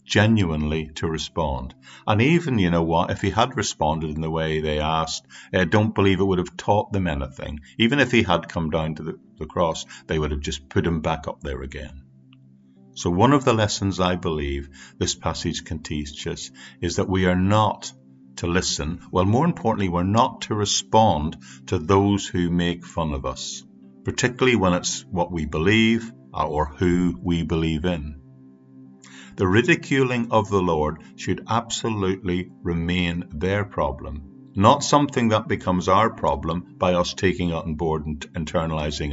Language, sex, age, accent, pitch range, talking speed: English, male, 50-69, British, 75-95 Hz, 175 wpm